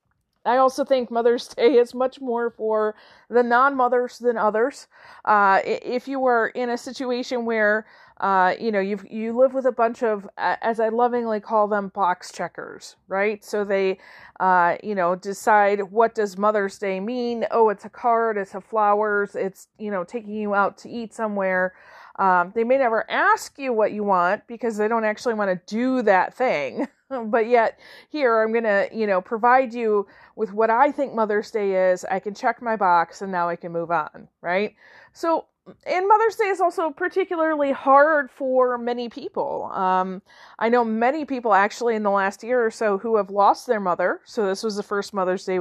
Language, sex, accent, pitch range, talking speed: English, female, American, 200-245 Hz, 195 wpm